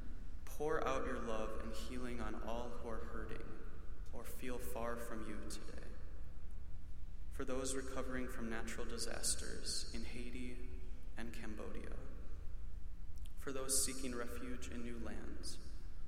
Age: 20-39